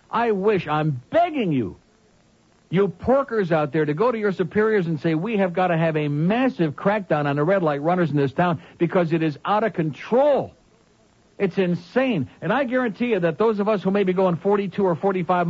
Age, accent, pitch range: 60-79, American, 150-200 Hz